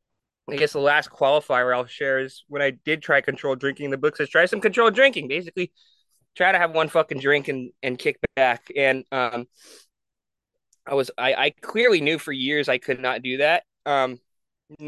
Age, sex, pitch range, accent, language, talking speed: 20-39, male, 135-160 Hz, American, English, 195 wpm